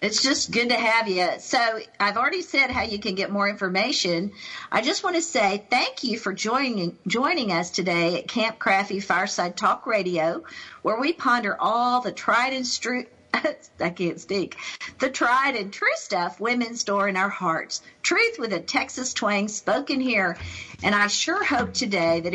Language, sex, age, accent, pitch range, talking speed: English, female, 50-69, American, 170-230 Hz, 185 wpm